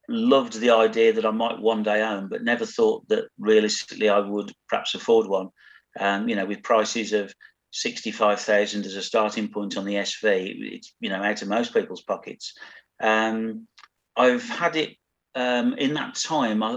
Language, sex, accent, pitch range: English, male, British, 105-140 Hz